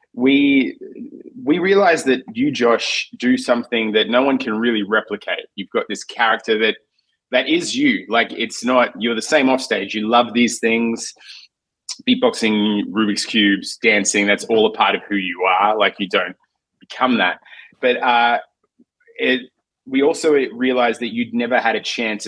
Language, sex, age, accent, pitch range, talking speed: English, male, 20-39, Australian, 100-125 Hz, 170 wpm